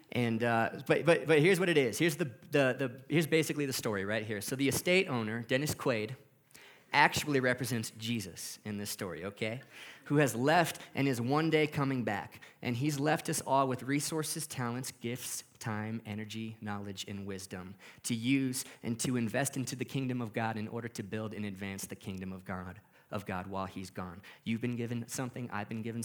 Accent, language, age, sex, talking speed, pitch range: American, English, 30-49, male, 200 wpm, 105-130 Hz